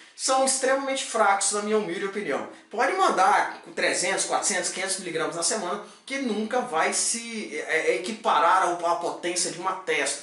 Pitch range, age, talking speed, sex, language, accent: 170-235 Hz, 20-39, 165 wpm, male, Portuguese, Brazilian